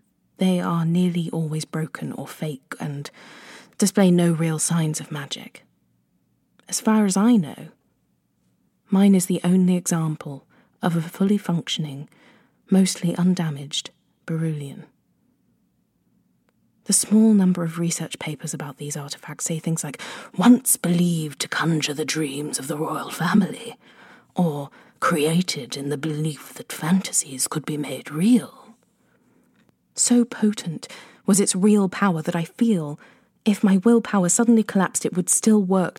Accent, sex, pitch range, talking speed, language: British, female, 160-205 Hz, 135 wpm, English